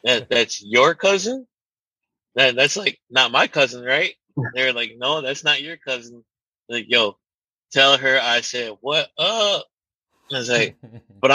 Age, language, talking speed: 20-39, English, 170 wpm